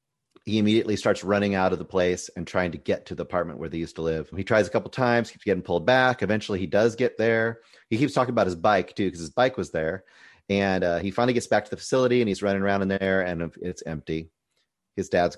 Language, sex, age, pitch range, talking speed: English, male, 30-49, 85-120 Hz, 260 wpm